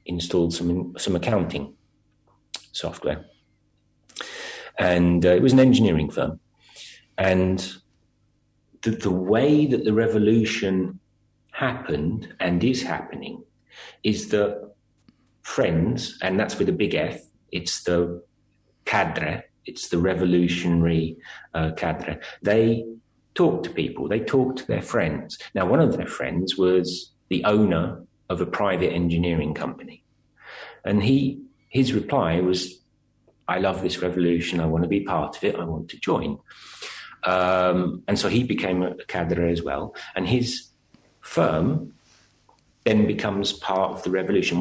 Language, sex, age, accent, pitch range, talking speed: English, male, 40-59, British, 85-110 Hz, 135 wpm